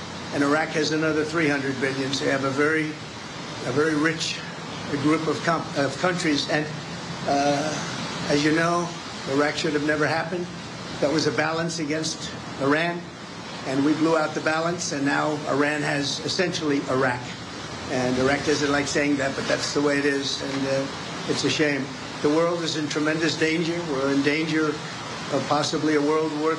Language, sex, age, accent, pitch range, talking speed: English, male, 50-69, American, 145-160 Hz, 175 wpm